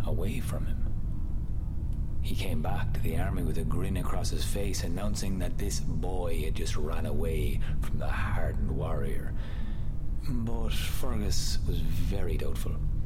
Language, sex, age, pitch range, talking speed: English, male, 30-49, 80-110 Hz, 145 wpm